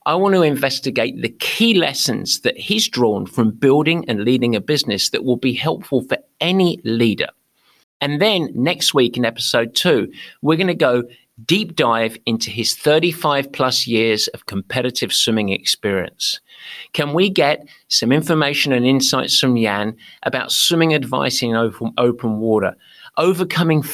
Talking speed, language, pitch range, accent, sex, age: 155 wpm, English, 120-170 Hz, British, male, 50-69